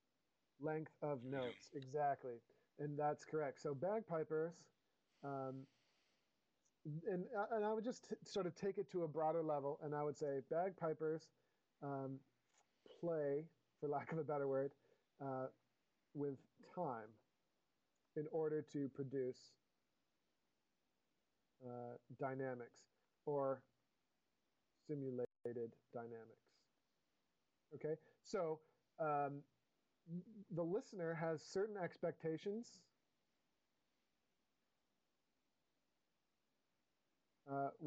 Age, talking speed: 40-59, 95 wpm